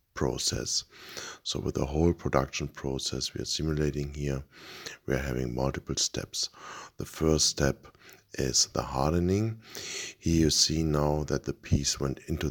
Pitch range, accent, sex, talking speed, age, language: 70-85 Hz, German, male, 150 wpm, 60-79, English